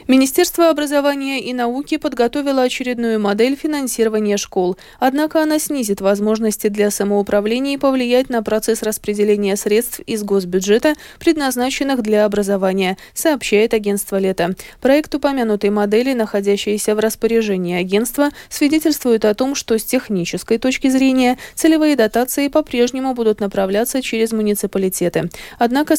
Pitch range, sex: 210-270 Hz, female